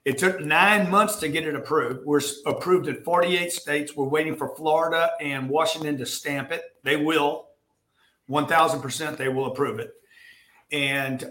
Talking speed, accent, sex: 160 wpm, American, male